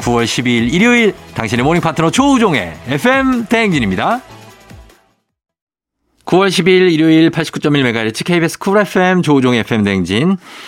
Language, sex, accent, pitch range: Korean, male, native, 100-145 Hz